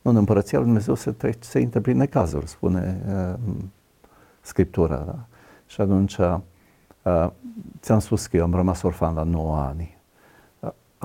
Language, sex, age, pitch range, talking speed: Romanian, male, 50-69, 85-105 Hz, 150 wpm